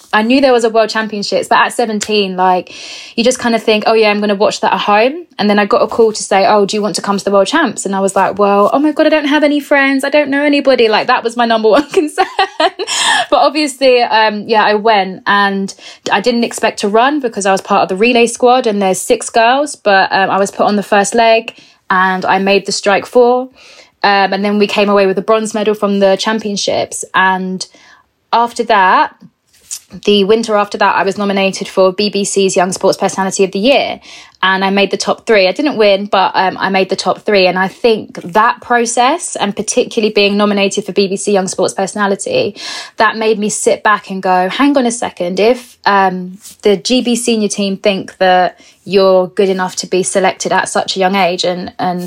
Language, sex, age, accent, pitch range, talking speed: English, female, 20-39, British, 190-235 Hz, 230 wpm